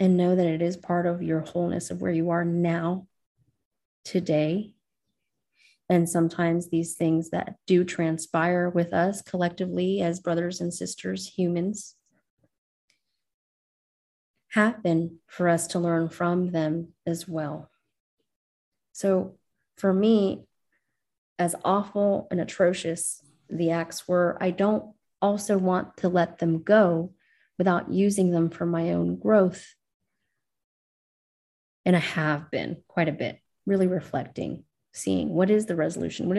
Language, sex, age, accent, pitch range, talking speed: English, female, 30-49, American, 170-200 Hz, 130 wpm